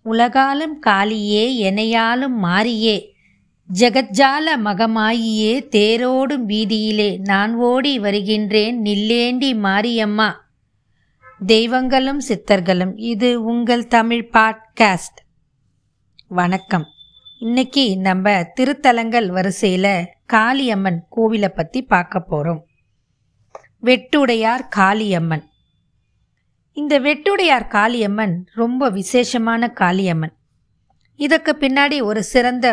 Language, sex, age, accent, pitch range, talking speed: Tamil, female, 20-39, native, 185-245 Hz, 75 wpm